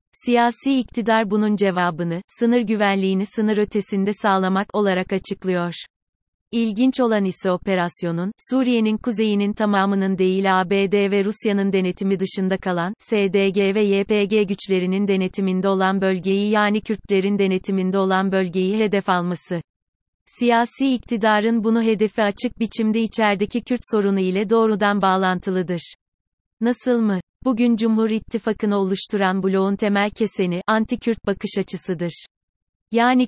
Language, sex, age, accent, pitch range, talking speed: Turkish, female, 30-49, native, 190-220 Hz, 115 wpm